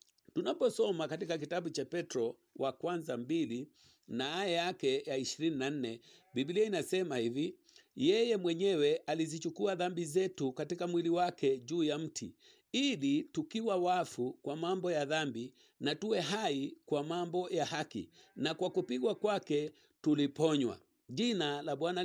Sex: male